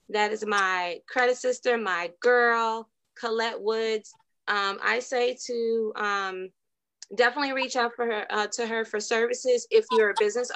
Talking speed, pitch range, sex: 160 wpm, 210-245 Hz, female